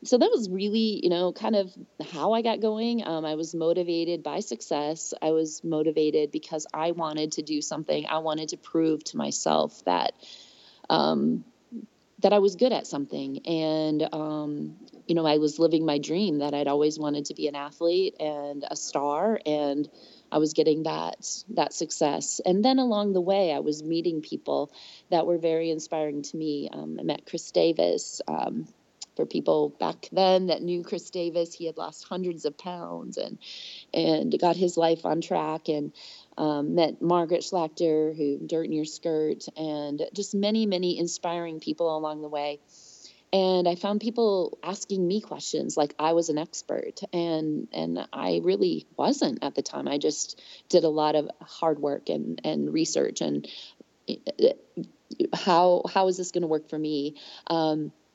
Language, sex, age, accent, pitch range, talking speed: English, female, 30-49, American, 150-185 Hz, 175 wpm